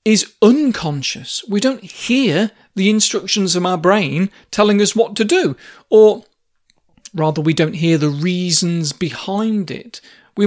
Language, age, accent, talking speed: English, 40-59, British, 145 wpm